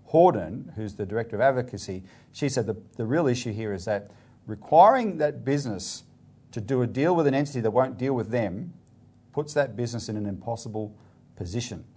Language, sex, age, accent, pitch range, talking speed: English, male, 40-59, Australian, 110-145 Hz, 185 wpm